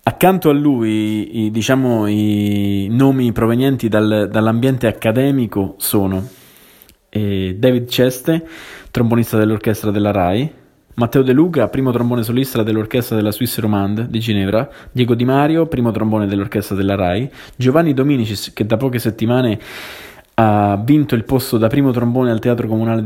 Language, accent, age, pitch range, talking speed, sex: Italian, native, 20-39, 105-125 Hz, 145 wpm, male